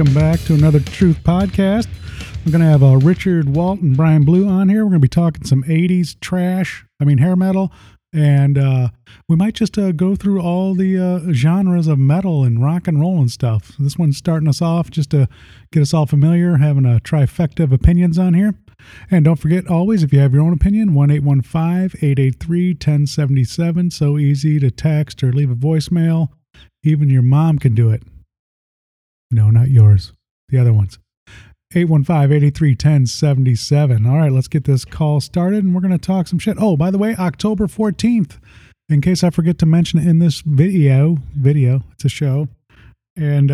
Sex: male